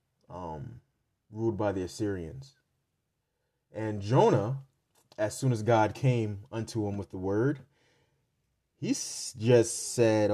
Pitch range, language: 105-130 Hz, English